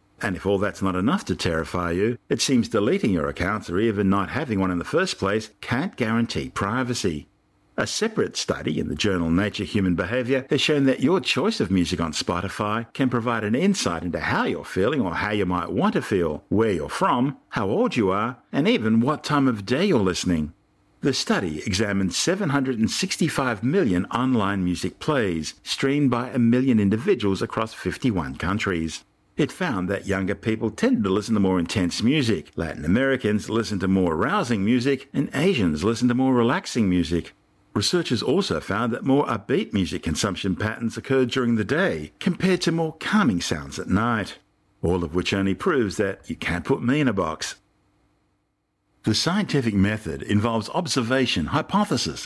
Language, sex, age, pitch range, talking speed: English, male, 50-69, 95-125 Hz, 180 wpm